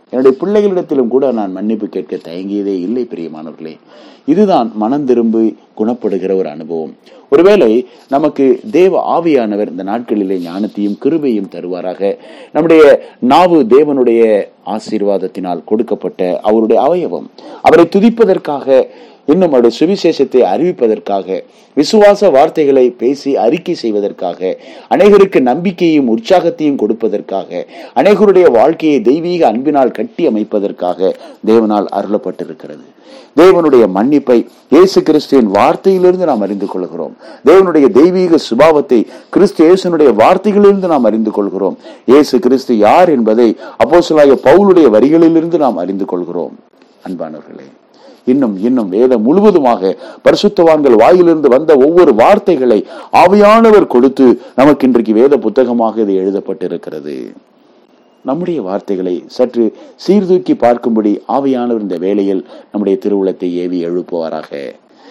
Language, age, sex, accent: Tamil, 30-49, male, native